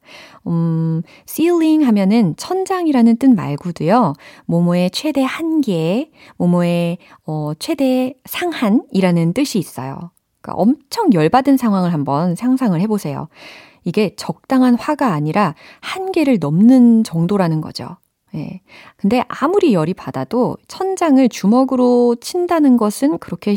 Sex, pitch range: female, 165-265 Hz